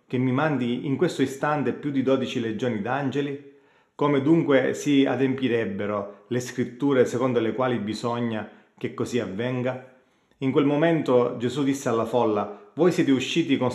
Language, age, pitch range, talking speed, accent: Italian, 30-49, 110-140 Hz, 155 wpm, native